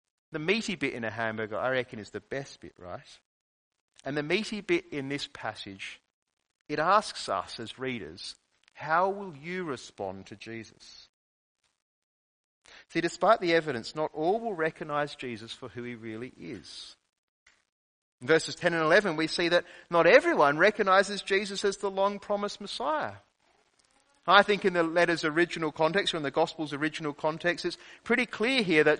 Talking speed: 165 wpm